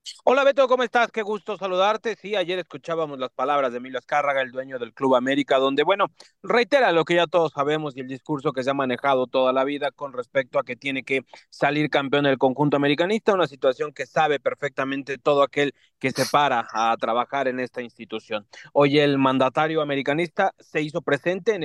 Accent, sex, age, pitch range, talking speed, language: Mexican, male, 30-49, 145-175 Hz, 200 wpm, Spanish